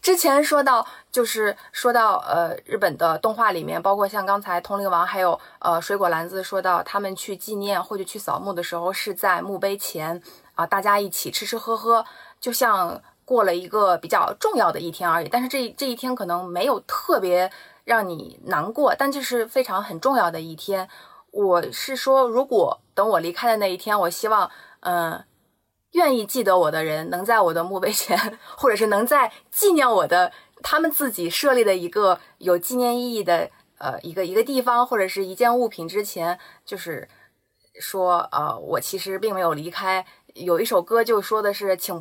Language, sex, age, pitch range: Chinese, female, 20-39, 175-240 Hz